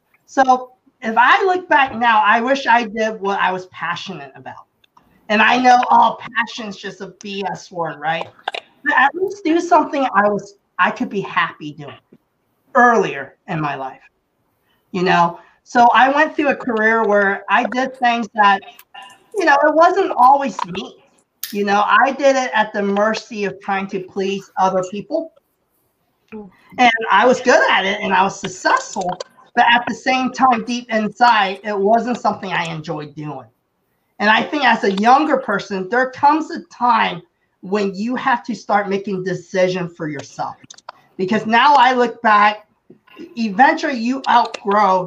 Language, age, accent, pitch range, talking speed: English, 40-59, American, 195-255 Hz, 165 wpm